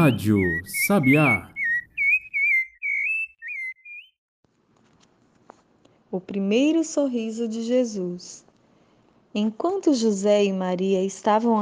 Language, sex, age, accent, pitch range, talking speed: Portuguese, female, 20-39, Brazilian, 195-255 Hz, 60 wpm